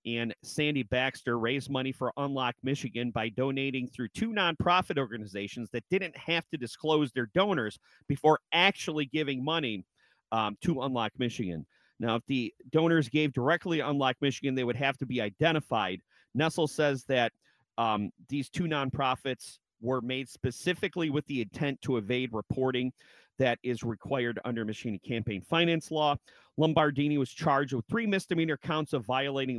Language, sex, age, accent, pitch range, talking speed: English, male, 40-59, American, 125-155 Hz, 155 wpm